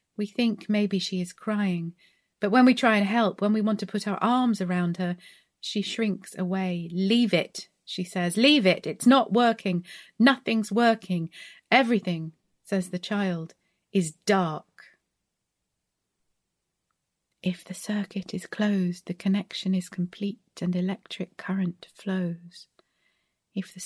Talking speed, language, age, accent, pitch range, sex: 140 wpm, English, 30-49, British, 180-215 Hz, female